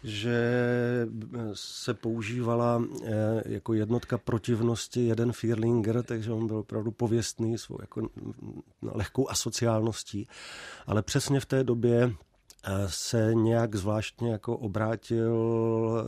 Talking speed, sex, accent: 100 wpm, male, native